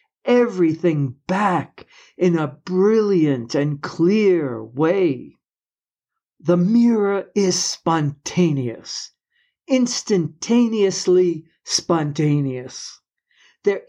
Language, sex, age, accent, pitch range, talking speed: English, male, 60-79, American, 150-200 Hz, 65 wpm